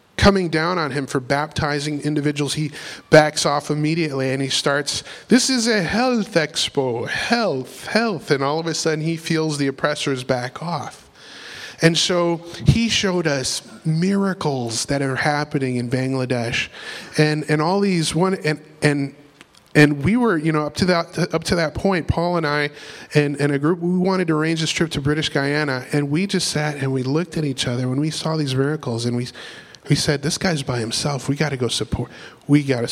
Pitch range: 135-160 Hz